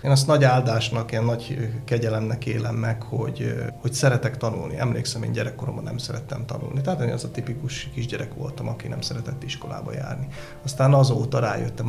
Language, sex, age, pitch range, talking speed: Hungarian, male, 30-49, 115-130 Hz, 165 wpm